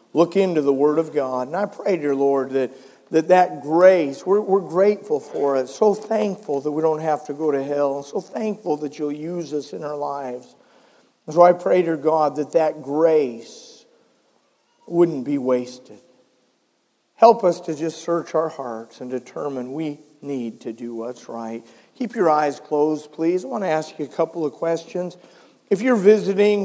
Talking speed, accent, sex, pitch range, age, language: 185 wpm, American, male, 145-185 Hz, 50-69, English